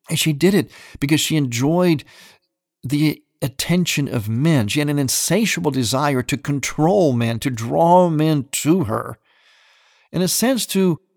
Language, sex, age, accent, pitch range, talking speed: English, male, 50-69, American, 125-175 Hz, 150 wpm